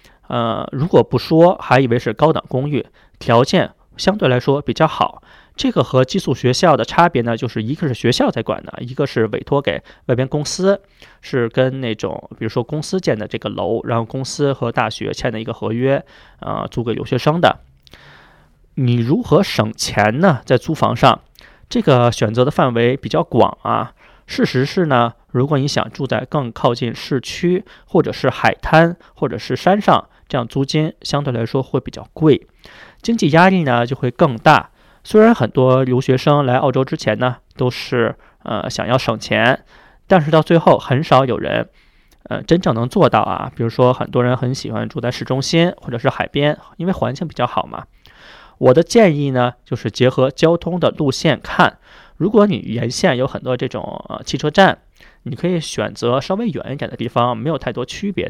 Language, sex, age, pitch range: Chinese, male, 20-39, 120-160 Hz